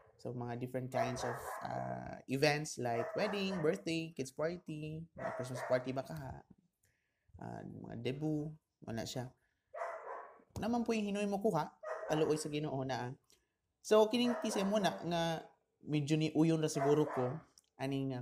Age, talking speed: 20-39, 150 wpm